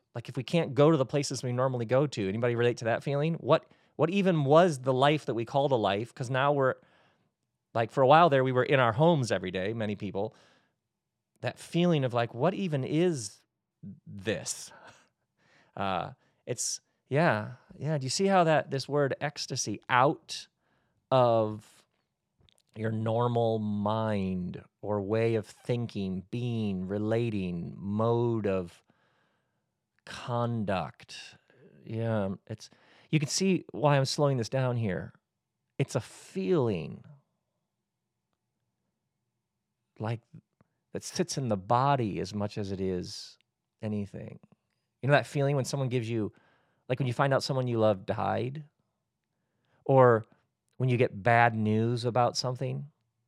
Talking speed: 145 wpm